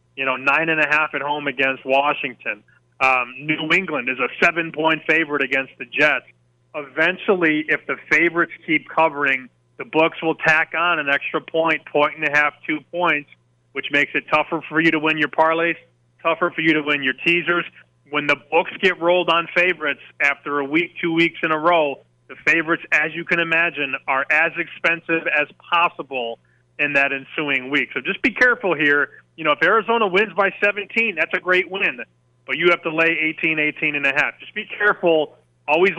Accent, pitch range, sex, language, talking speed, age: American, 145-175 Hz, male, English, 195 wpm, 30-49